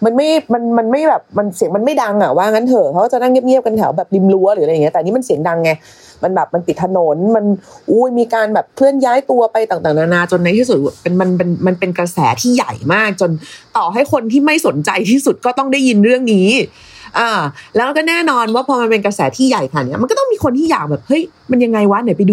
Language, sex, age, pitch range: Thai, female, 30-49, 170-245 Hz